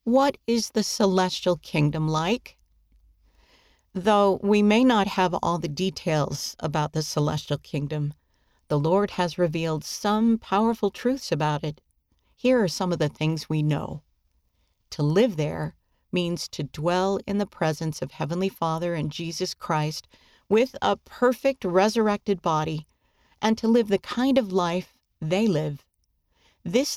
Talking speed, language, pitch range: 145 wpm, English, 150-200 Hz